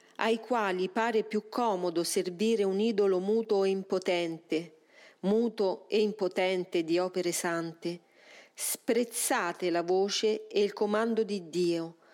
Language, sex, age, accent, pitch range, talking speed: Italian, female, 40-59, native, 180-225 Hz, 125 wpm